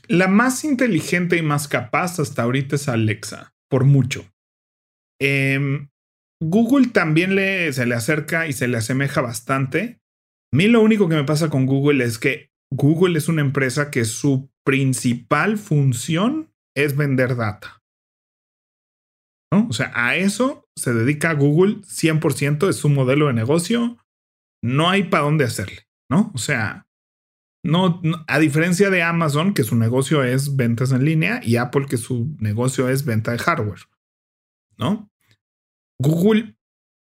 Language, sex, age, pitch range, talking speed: Spanish, male, 30-49, 125-170 Hz, 145 wpm